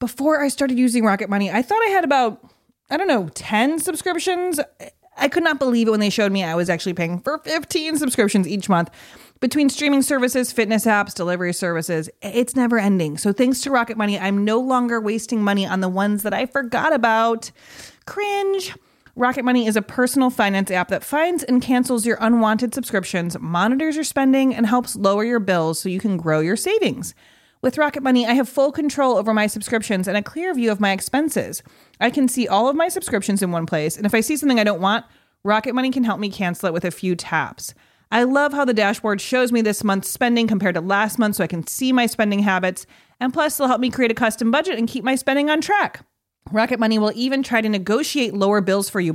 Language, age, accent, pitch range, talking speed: English, 30-49, American, 200-265 Hz, 225 wpm